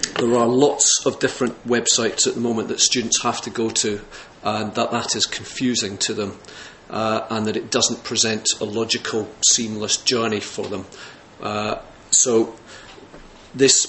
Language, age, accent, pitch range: English, 40-59, British, 110-125 Hz